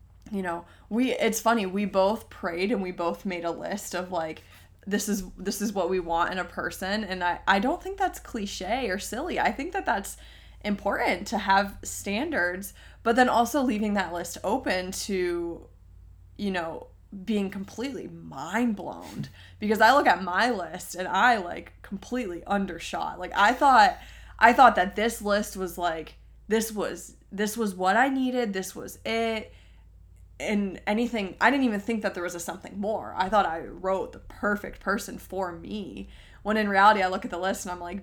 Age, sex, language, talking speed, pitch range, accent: 20-39, female, English, 190 wpm, 175-215 Hz, American